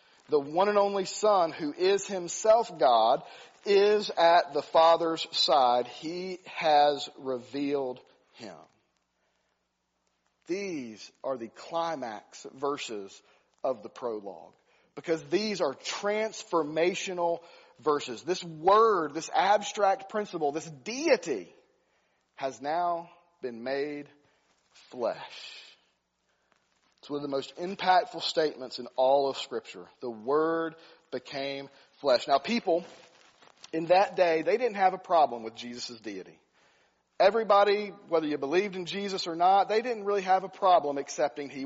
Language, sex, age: English, male, 40-59